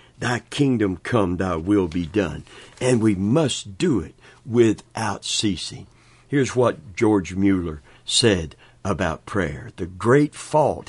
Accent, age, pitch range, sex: American, 60-79, 105-130 Hz, male